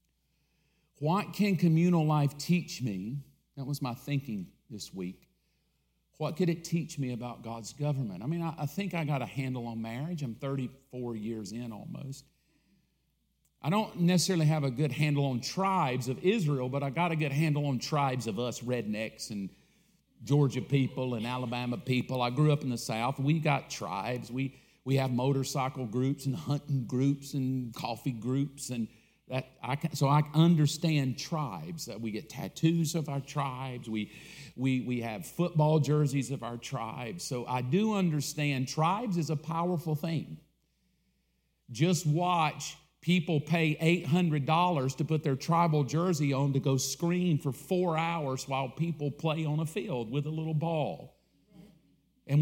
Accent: American